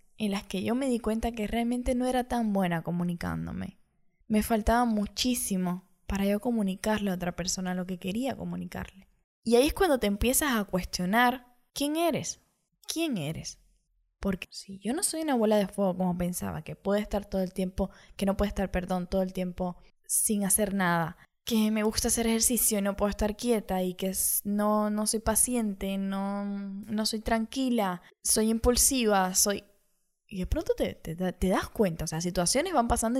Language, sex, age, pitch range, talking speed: Spanish, female, 10-29, 180-235 Hz, 190 wpm